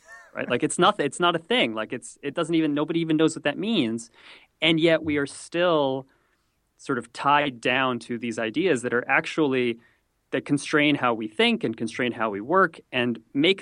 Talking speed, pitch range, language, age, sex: 205 wpm, 115-155 Hz, English, 30-49, male